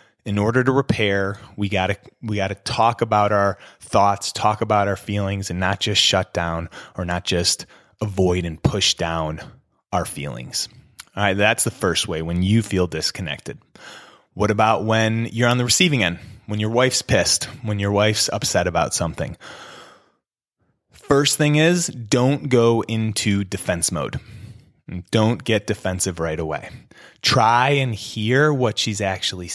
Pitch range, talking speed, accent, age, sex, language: 100-125 Hz, 160 wpm, American, 20-39, male, English